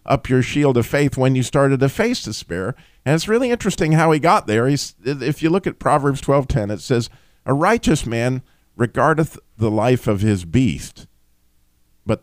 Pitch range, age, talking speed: 110-170 Hz, 50-69, 185 wpm